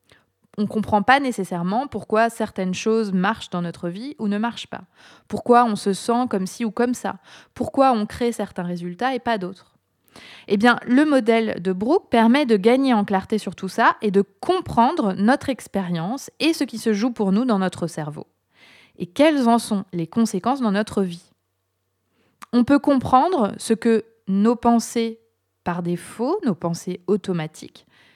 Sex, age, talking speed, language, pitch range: female, 20-39, 175 wpm, French, 185-240 Hz